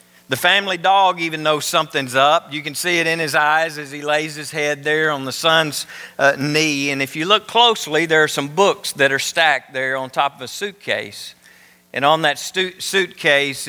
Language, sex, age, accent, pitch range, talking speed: English, male, 50-69, American, 130-165 Hz, 205 wpm